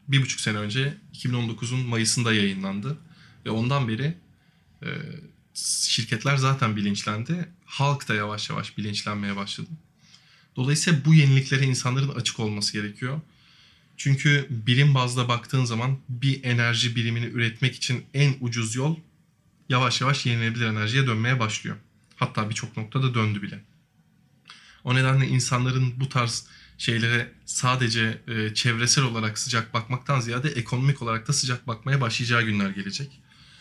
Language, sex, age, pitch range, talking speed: Turkish, male, 20-39, 110-135 Hz, 125 wpm